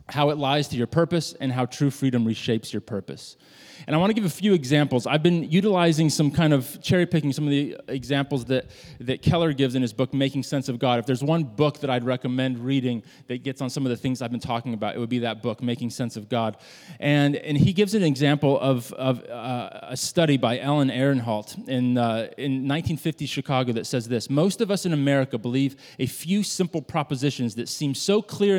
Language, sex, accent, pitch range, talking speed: English, male, American, 130-160 Hz, 225 wpm